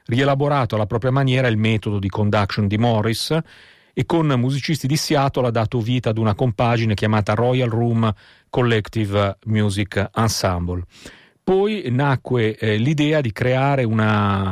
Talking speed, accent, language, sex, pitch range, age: 140 wpm, native, Italian, male, 105-125 Hz, 40-59